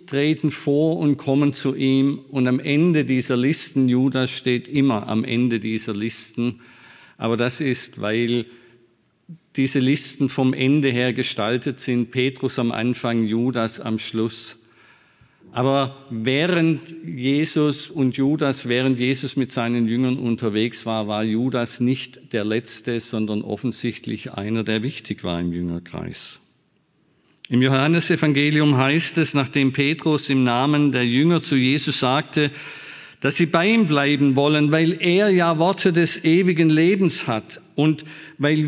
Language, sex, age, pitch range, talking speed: German, male, 50-69, 120-160 Hz, 140 wpm